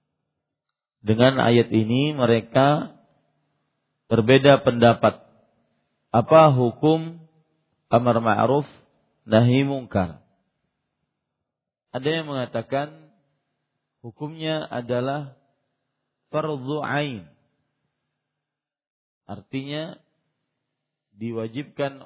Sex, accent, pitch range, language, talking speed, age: male, Indonesian, 120-145 Hz, English, 55 wpm, 40-59